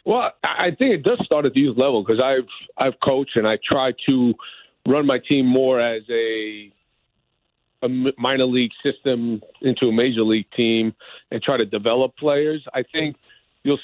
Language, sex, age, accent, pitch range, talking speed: English, male, 40-59, American, 120-150 Hz, 180 wpm